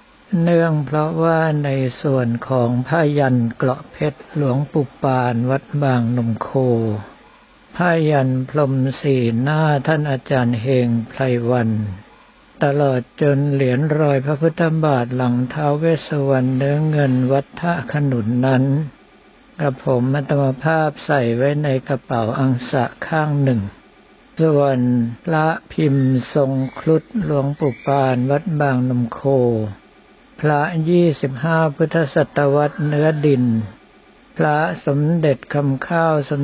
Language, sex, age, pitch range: Thai, male, 60-79, 130-155 Hz